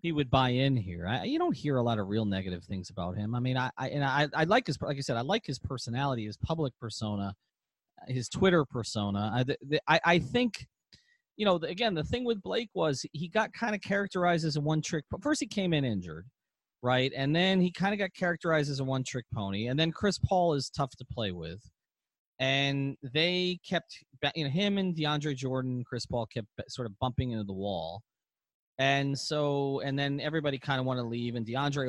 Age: 30-49